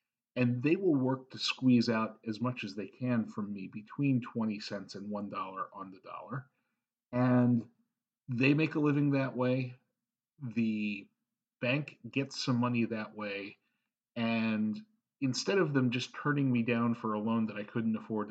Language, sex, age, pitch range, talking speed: English, male, 40-59, 110-135 Hz, 165 wpm